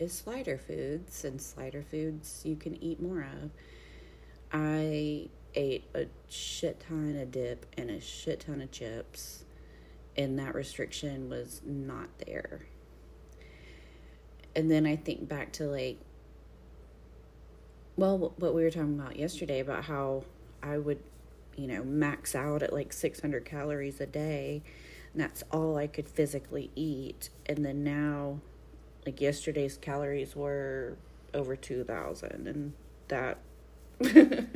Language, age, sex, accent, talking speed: English, 30-49, female, American, 130 wpm